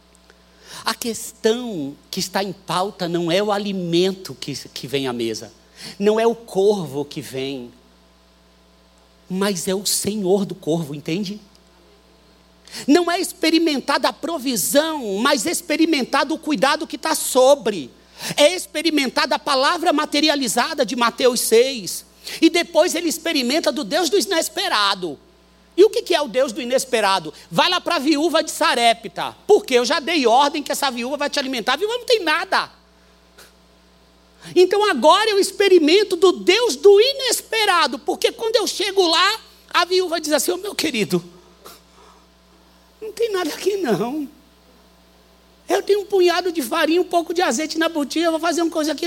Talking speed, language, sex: 160 wpm, Portuguese, male